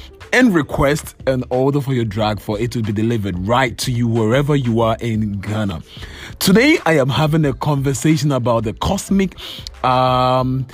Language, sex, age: English, male, 20-39